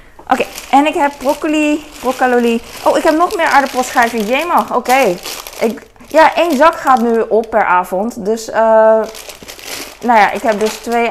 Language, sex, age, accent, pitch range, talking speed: Dutch, female, 20-39, Dutch, 175-250 Hz, 175 wpm